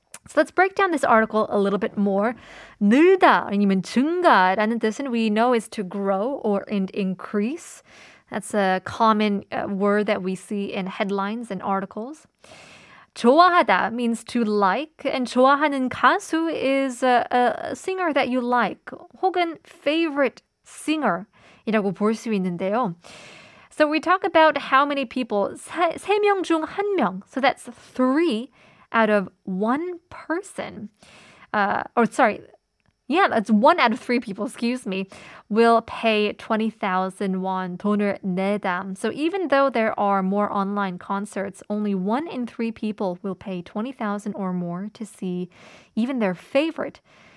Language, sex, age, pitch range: Korean, female, 20-39, 205-280 Hz